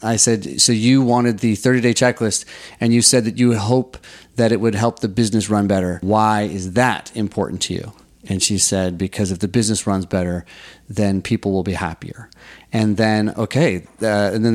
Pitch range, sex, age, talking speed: 95-120 Hz, male, 30-49, 200 wpm